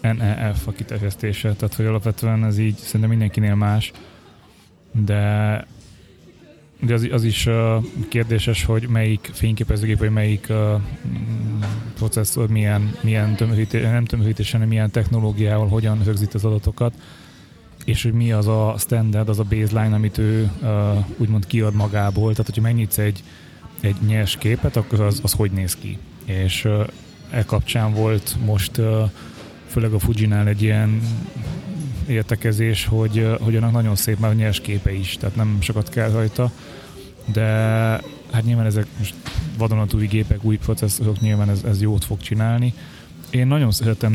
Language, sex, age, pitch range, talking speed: Hungarian, male, 20-39, 105-115 Hz, 145 wpm